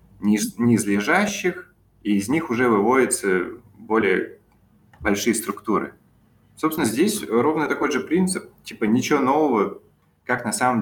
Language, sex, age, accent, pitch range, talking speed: Russian, male, 20-39, native, 100-120 Hz, 120 wpm